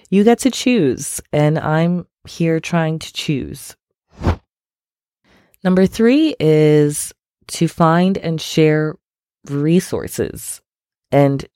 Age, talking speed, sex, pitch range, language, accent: 20-39, 100 wpm, female, 135-160 Hz, English, American